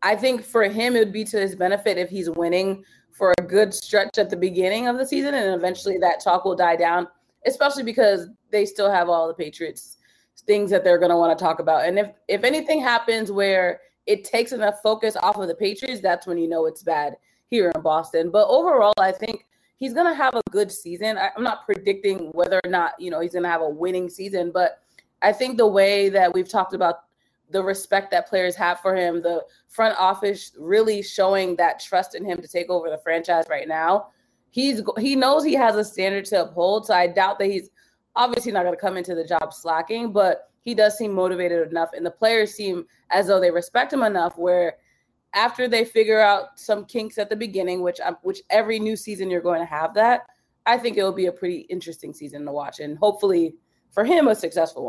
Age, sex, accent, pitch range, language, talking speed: 20-39, female, American, 175-220 Hz, English, 225 wpm